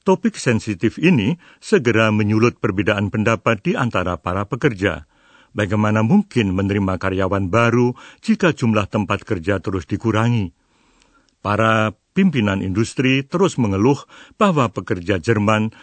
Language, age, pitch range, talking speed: Indonesian, 60-79, 100-135 Hz, 115 wpm